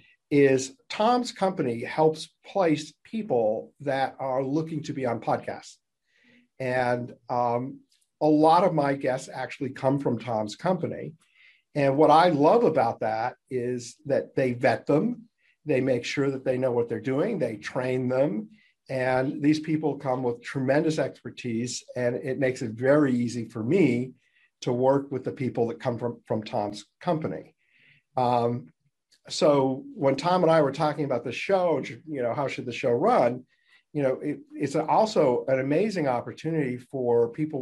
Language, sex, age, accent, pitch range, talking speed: English, male, 50-69, American, 125-155 Hz, 165 wpm